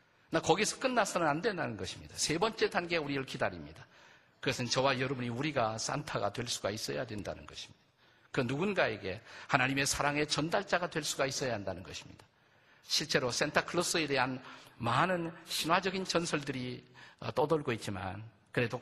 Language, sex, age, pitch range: Korean, male, 50-69, 120-160 Hz